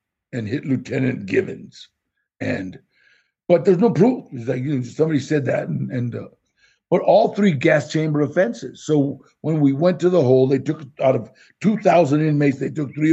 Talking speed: 185 wpm